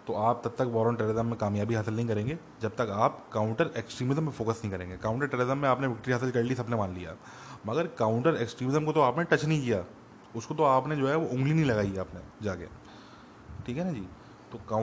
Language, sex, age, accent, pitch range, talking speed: English, male, 20-39, Indian, 100-125 Hz, 210 wpm